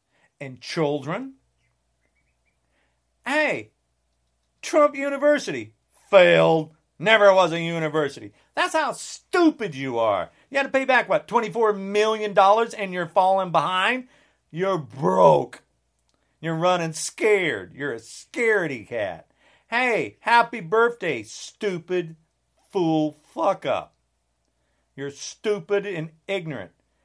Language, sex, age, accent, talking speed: English, male, 40-59, American, 105 wpm